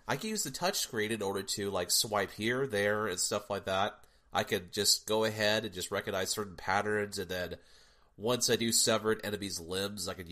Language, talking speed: English, 210 wpm